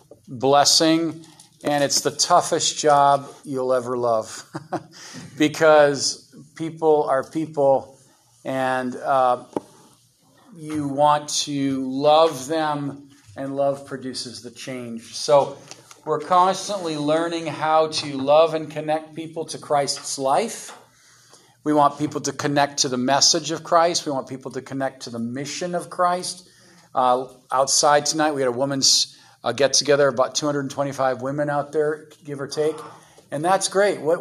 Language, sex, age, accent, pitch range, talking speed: English, male, 50-69, American, 135-160 Hz, 140 wpm